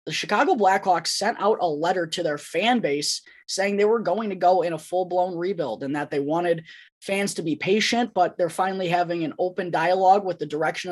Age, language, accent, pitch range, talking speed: 20-39, English, American, 165-200 Hz, 215 wpm